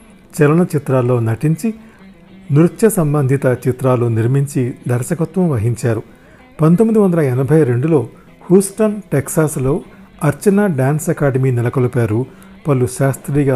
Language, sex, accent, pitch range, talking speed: Telugu, male, native, 125-170 Hz, 90 wpm